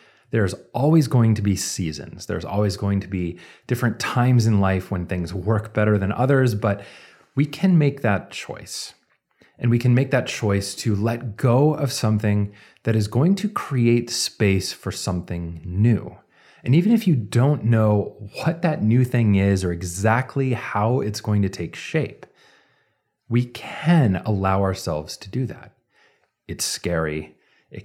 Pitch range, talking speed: 100-130 Hz, 165 wpm